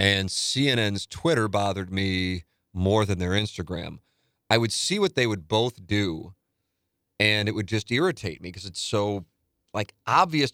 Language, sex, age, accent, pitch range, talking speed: English, male, 40-59, American, 90-110 Hz, 160 wpm